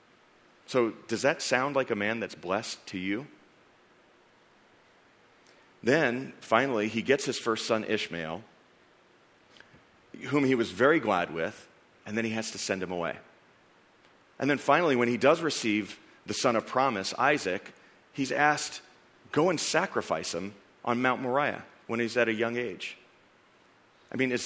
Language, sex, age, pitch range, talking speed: English, male, 40-59, 100-130 Hz, 155 wpm